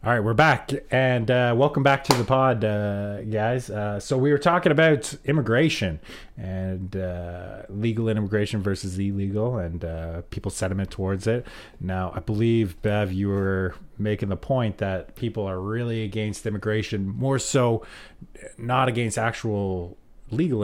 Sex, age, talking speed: male, 30-49, 155 wpm